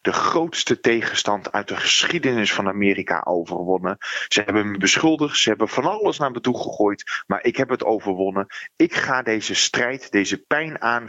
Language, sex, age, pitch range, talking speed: Dutch, male, 30-49, 95-125 Hz, 180 wpm